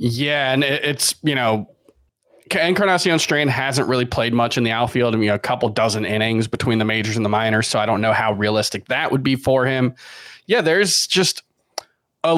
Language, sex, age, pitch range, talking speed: English, male, 20-39, 115-150 Hz, 210 wpm